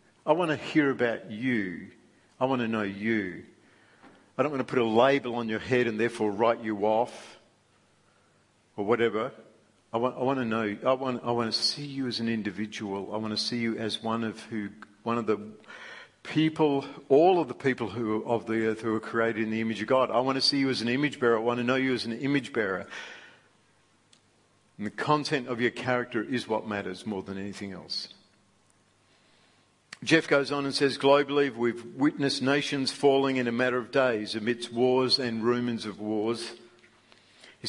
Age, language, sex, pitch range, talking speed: 50-69, English, male, 110-130 Hz, 200 wpm